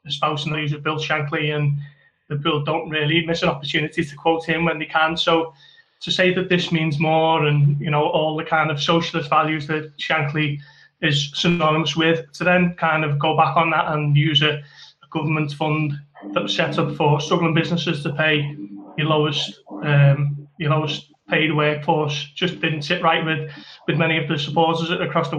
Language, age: English, 20-39